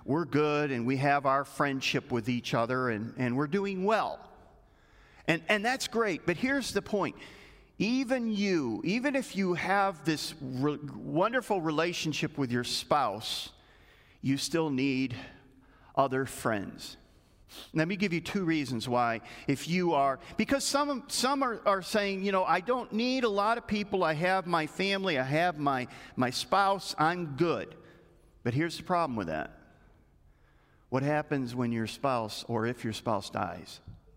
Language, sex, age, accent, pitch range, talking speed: English, male, 50-69, American, 125-190 Hz, 165 wpm